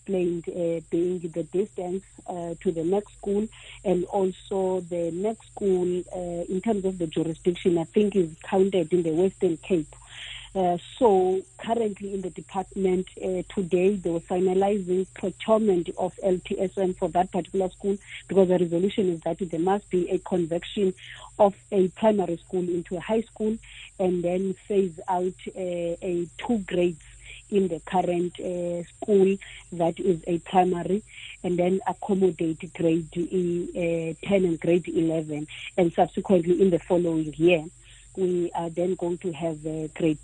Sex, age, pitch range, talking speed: female, 40-59, 170-195 Hz, 155 wpm